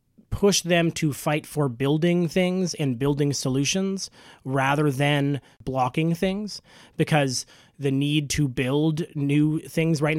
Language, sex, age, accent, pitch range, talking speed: English, male, 30-49, American, 135-170 Hz, 130 wpm